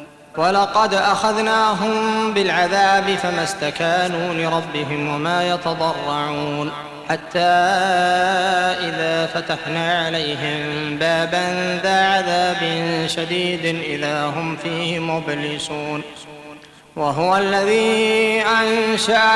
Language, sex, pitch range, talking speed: Arabic, male, 150-195 Hz, 70 wpm